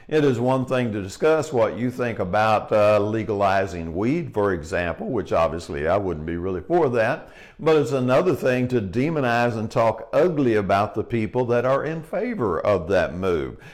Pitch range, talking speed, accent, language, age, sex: 105-140 Hz, 185 wpm, American, English, 50-69, male